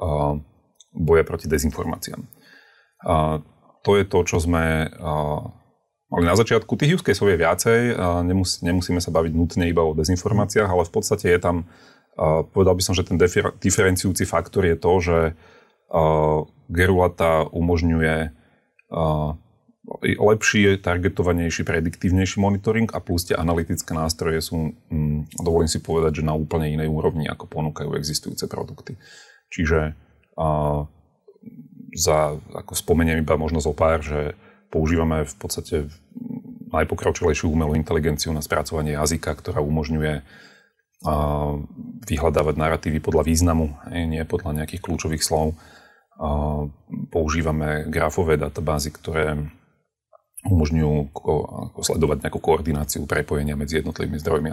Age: 30-49